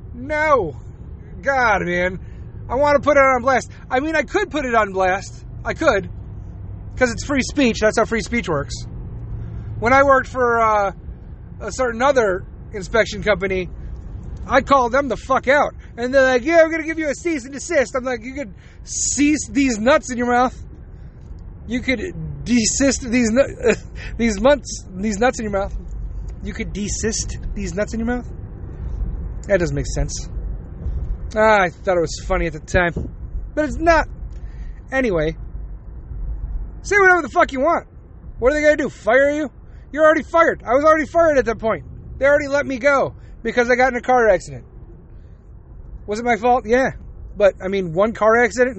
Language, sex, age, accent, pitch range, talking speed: English, male, 30-49, American, 185-275 Hz, 185 wpm